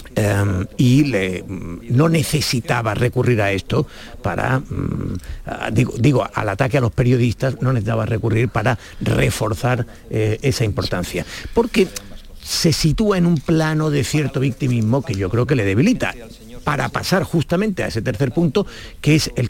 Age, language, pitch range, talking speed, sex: 50-69, Spanish, 110-145 Hz, 155 wpm, male